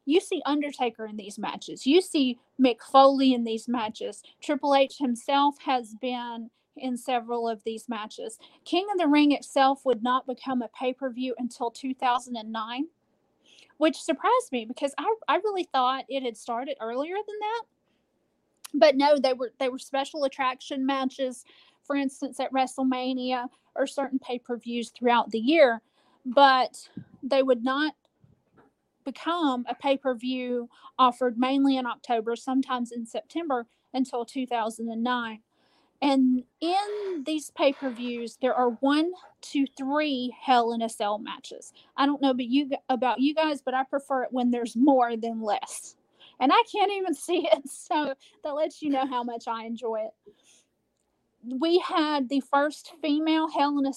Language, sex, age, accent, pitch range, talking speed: English, female, 30-49, American, 245-290 Hz, 155 wpm